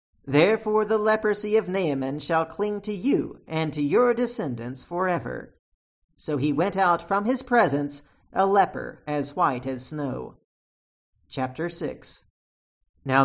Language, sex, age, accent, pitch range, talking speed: English, male, 40-59, American, 145-225 Hz, 135 wpm